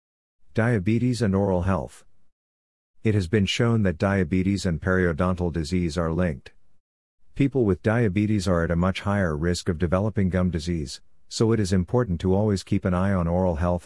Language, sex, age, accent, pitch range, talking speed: English, male, 50-69, American, 85-100 Hz, 175 wpm